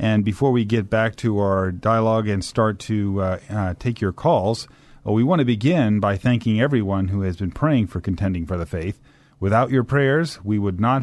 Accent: American